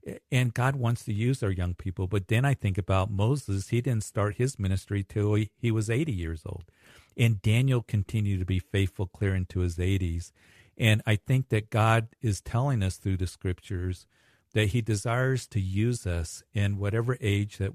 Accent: American